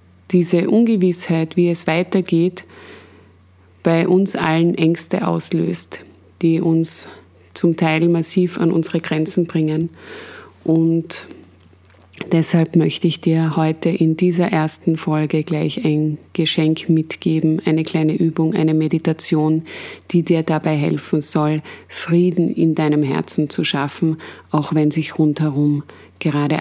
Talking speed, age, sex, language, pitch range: 120 wpm, 20-39, female, German, 155-175 Hz